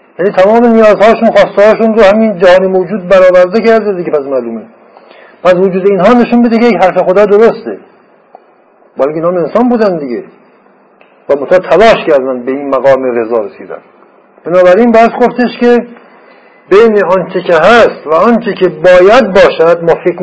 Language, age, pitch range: Persian, 60-79, 165-225 Hz